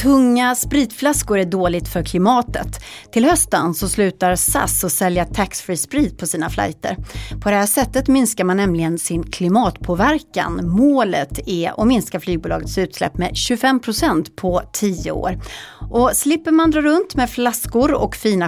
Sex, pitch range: female, 165-245 Hz